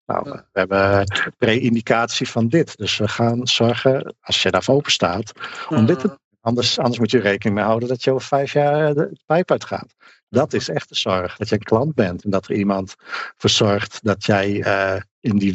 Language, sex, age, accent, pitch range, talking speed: Dutch, male, 50-69, Dutch, 105-130 Hz, 210 wpm